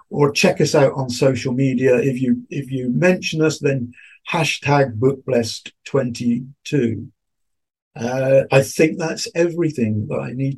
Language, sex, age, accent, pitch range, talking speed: English, male, 50-69, British, 135-170 Hz, 135 wpm